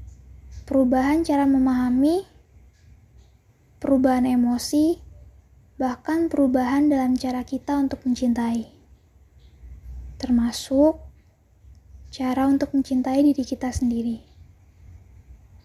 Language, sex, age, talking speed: Indonesian, female, 20-39, 75 wpm